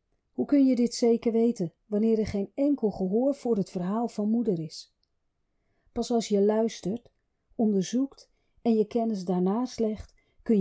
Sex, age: female, 40-59